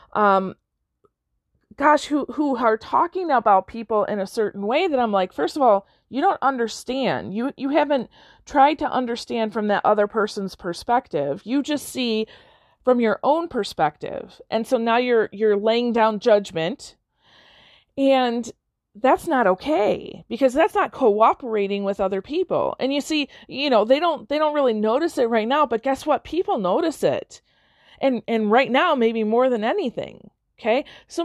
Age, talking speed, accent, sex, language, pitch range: 40-59, 170 wpm, American, female, English, 210-275 Hz